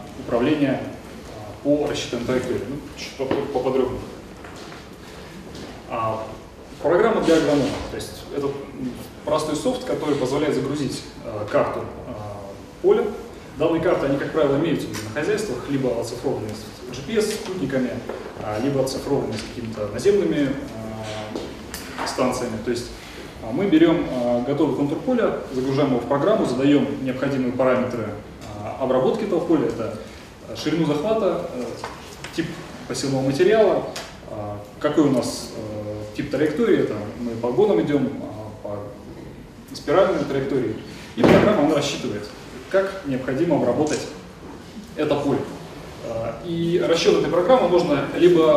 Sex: male